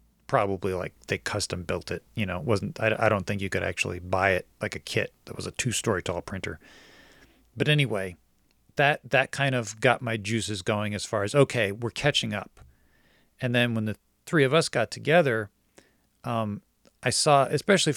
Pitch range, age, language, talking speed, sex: 105-130 Hz, 40-59, English, 190 wpm, male